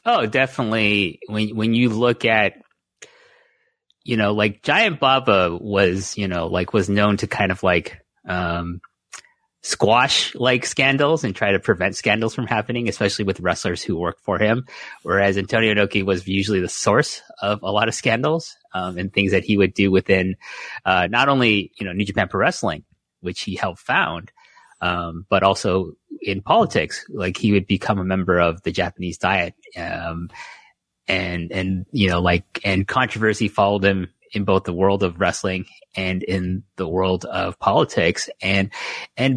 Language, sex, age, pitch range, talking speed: English, male, 30-49, 95-125 Hz, 170 wpm